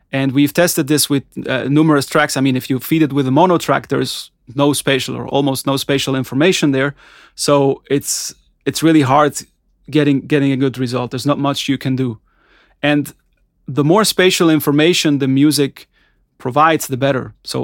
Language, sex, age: English, male, 30-49